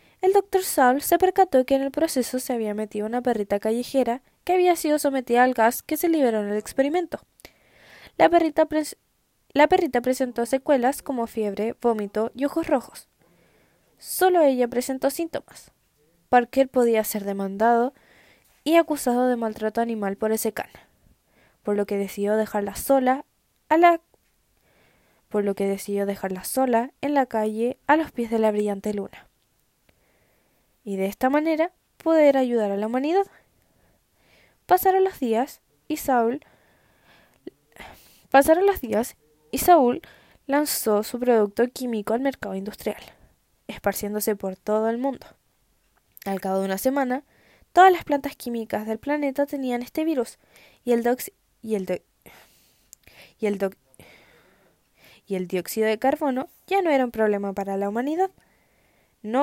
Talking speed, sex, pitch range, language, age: 150 wpm, female, 215-290 Hz, Amharic, 10-29